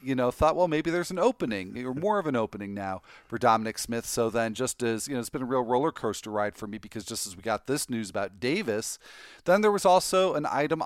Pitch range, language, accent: 110-135 Hz, English, American